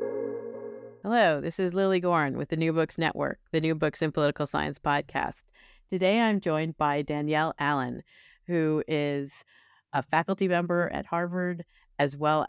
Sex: female